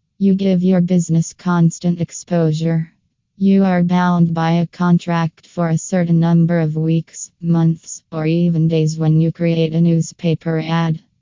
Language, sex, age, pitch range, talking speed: English, female, 20-39, 165-180 Hz, 150 wpm